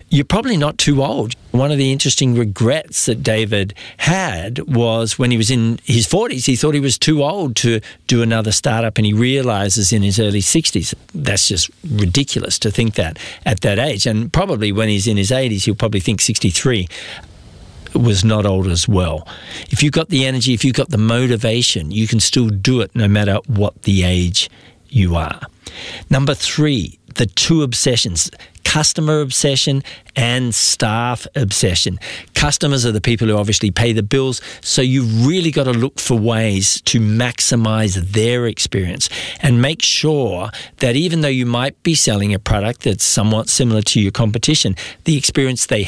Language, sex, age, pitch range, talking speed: English, male, 50-69, 105-130 Hz, 180 wpm